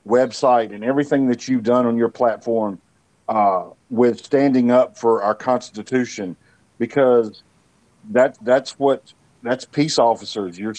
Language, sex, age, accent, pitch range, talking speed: English, male, 50-69, American, 115-145 Hz, 120 wpm